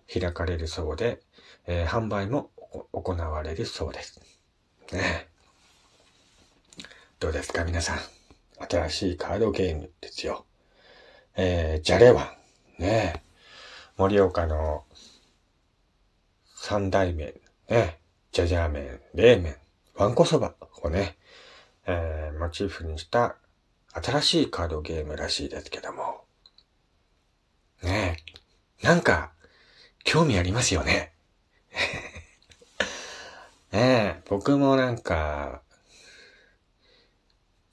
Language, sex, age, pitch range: Japanese, male, 40-59, 80-100 Hz